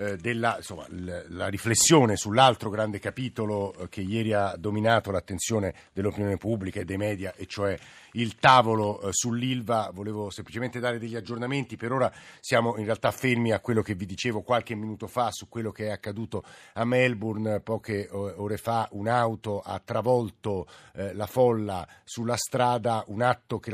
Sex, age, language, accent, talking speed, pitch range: male, 50-69, Italian, native, 150 wpm, 105-120 Hz